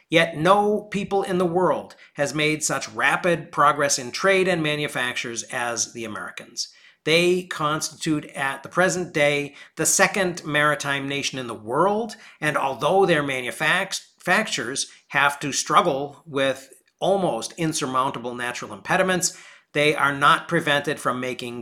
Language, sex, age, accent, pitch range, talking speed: English, male, 50-69, American, 135-175 Hz, 135 wpm